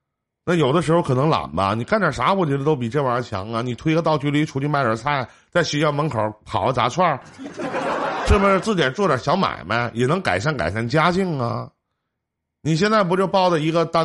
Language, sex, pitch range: Chinese, male, 115-170 Hz